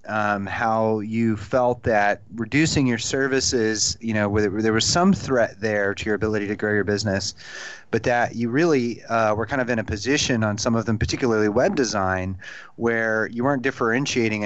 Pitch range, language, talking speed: 105-125 Hz, English, 185 wpm